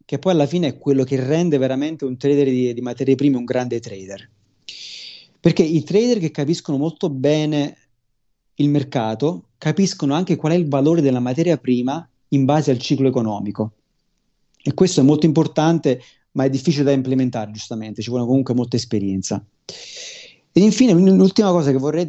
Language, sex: Italian, male